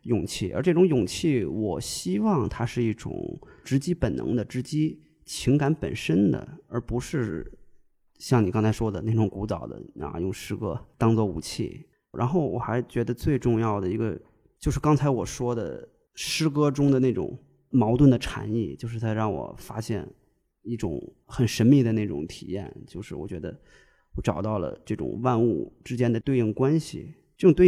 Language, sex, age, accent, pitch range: Chinese, male, 20-39, native, 110-135 Hz